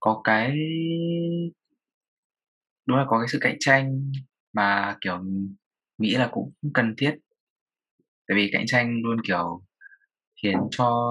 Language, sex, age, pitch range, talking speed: Vietnamese, male, 20-39, 100-130 Hz, 130 wpm